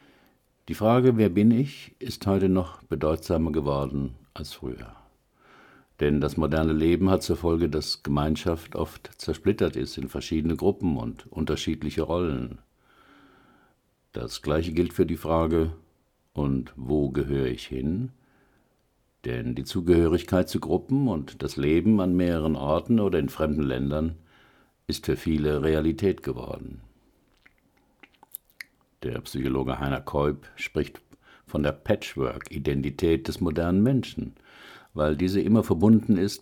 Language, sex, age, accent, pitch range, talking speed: German, male, 60-79, German, 70-90 Hz, 125 wpm